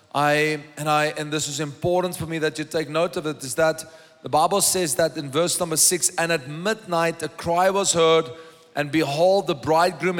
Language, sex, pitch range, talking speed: English, male, 160-190 Hz, 210 wpm